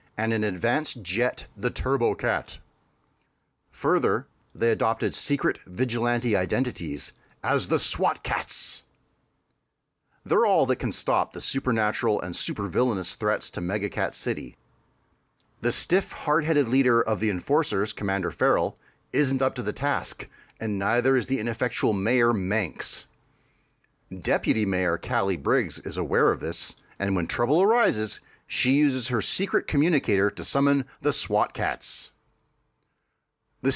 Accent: American